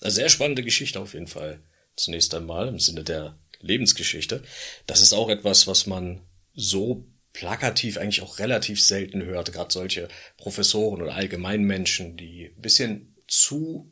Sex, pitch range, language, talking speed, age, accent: male, 90-110 Hz, German, 155 wpm, 40-59, German